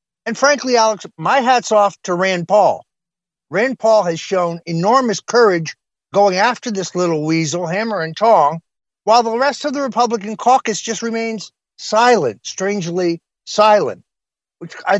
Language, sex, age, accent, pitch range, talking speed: English, male, 50-69, American, 155-210 Hz, 150 wpm